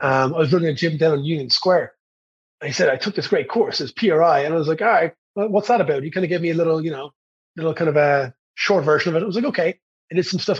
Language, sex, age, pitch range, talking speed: English, male, 30-49, 160-195 Hz, 305 wpm